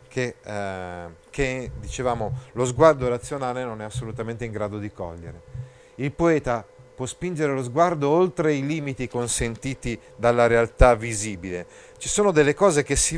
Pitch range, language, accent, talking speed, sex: 115-155 Hz, Italian, native, 150 wpm, male